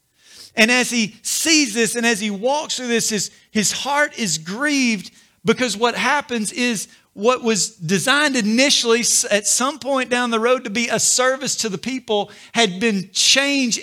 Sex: male